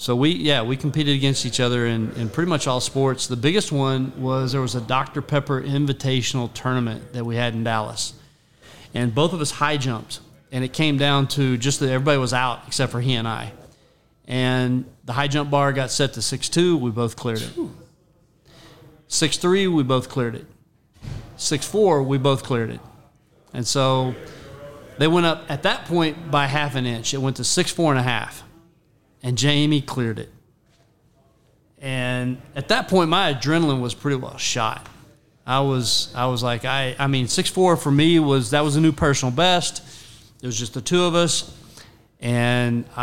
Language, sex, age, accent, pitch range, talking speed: English, male, 40-59, American, 120-145 Hz, 185 wpm